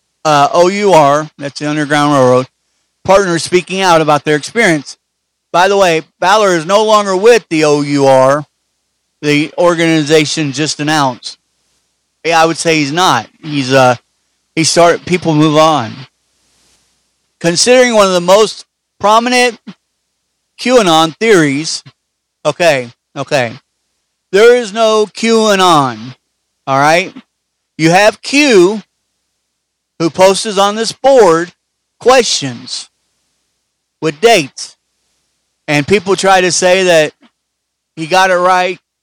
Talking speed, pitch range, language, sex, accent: 115 wpm, 150-190 Hz, English, male, American